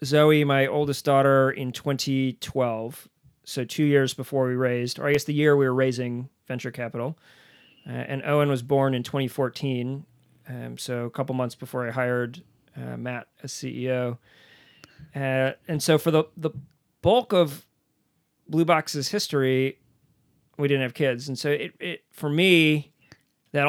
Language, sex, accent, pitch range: English, male, American, 130-150 Hz